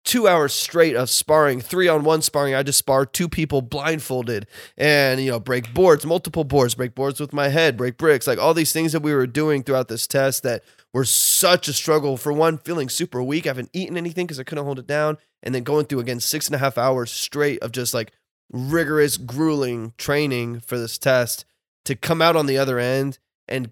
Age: 20-39